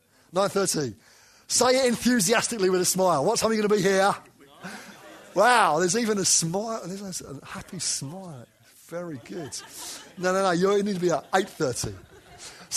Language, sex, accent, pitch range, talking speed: English, male, British, 115-170 Hz, 165 wpm